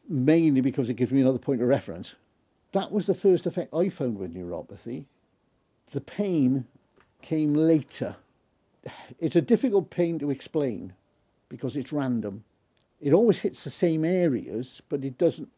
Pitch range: 125-165 Hz